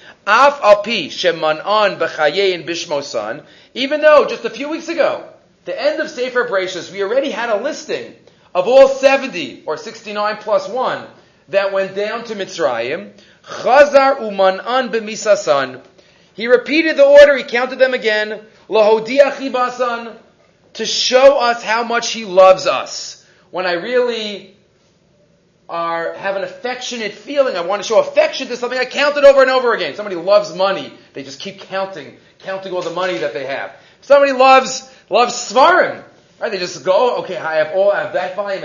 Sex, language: male, English